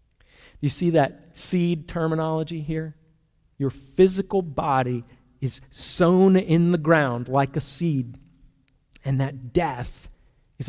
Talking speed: 120 wpm